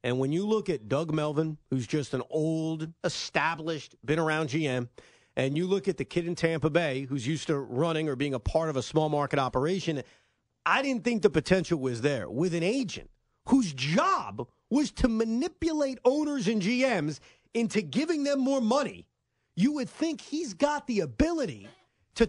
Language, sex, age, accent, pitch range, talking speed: English, male, 40-59, American, 155-235 Hz, 185 wpm